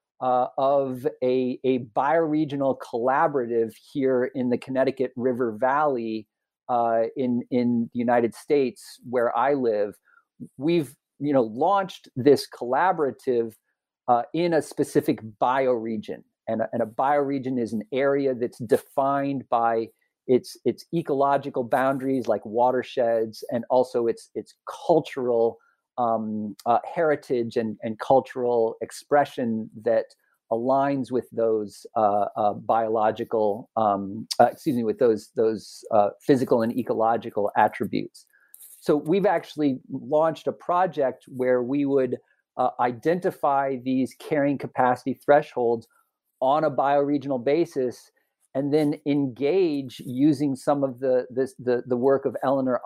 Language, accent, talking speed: English, American, 125 wpm